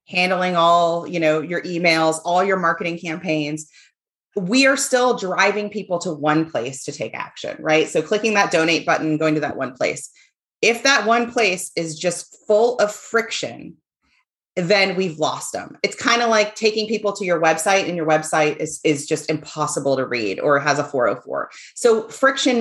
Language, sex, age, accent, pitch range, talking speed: English, female, 30-49, American, 170-220 Hz, 185 wpm